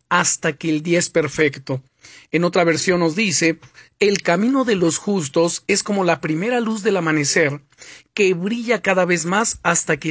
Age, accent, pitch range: 40-59, Mexican, 160-205 Hz